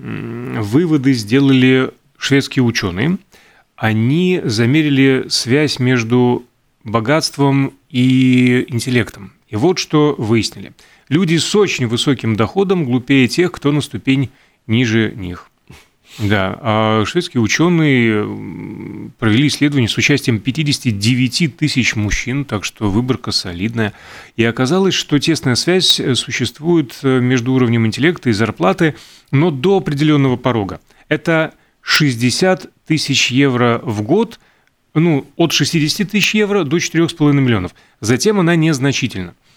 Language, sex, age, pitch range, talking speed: Russian, male, 30-49, 115-150 Hz, 110 wpm